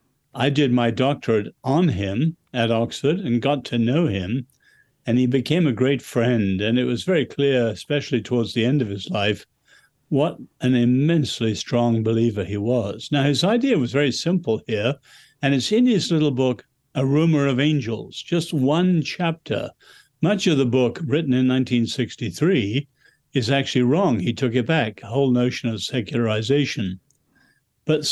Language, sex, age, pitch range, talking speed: English, male, 60-79, 120-155 Hz, 165 wpm